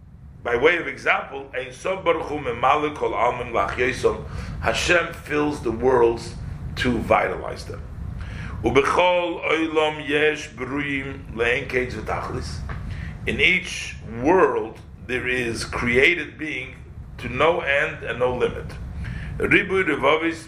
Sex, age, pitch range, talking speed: male, 50-69, 110-160 Hz, 110 wpm